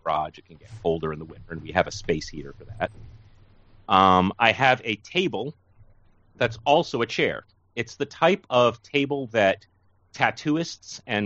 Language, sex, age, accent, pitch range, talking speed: English, male, 30-49, American, 95-125 Hz, 175 wpm